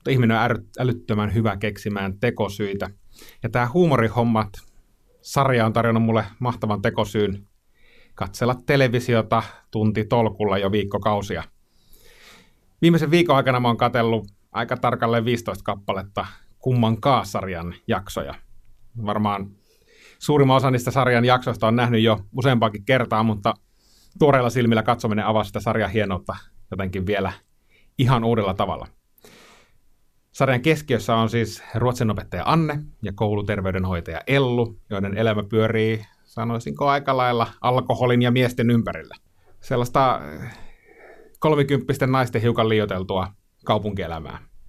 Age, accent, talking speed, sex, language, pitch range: 30-49, native, 110 wpm, male, Finnish, 100-125 Hz